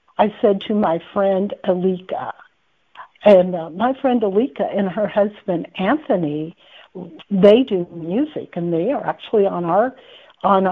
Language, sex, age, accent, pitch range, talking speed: English, female, 60-79, American, 175-230 Hz, 140 wpm